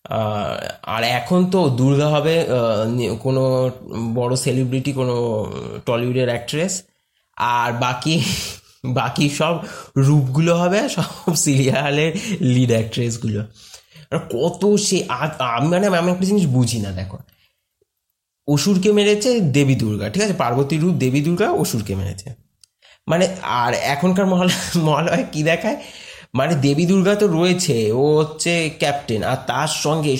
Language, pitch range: Bengali, 130-180 Hz